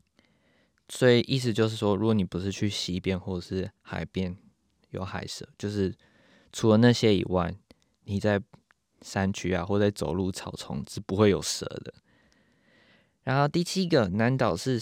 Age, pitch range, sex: 20-39, 95-110 Hz, male